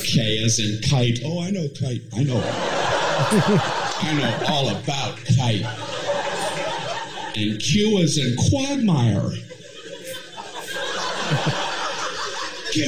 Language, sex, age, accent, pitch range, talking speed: English, male, 50-69, American, 145-210 Hz, 100 wpm